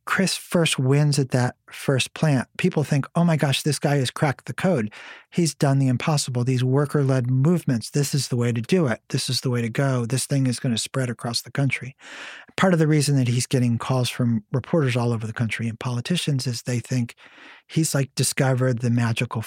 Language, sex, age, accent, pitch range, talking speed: English, male, 50-69, American, 125-150 Hz, 220 wpm